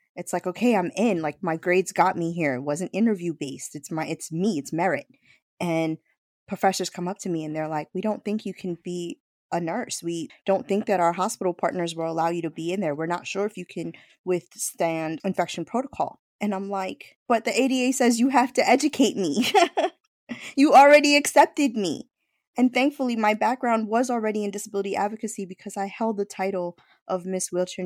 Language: English